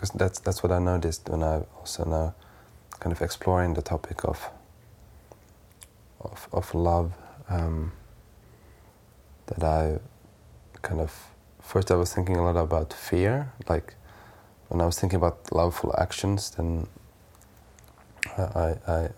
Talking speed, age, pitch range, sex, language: 135 wpm, 20-39, 80-95 Hz, male, Finnish